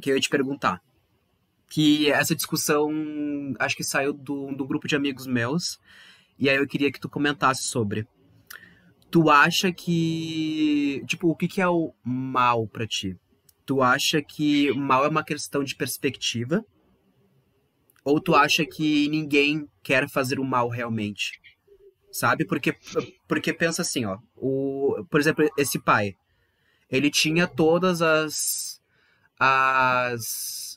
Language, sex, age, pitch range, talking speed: Portuguese, male, 20-39, 130-155 Hz, 140 wpm